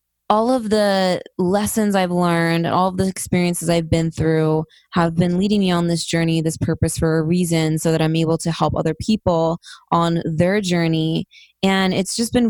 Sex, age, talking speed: female, 20-39, 195 wpm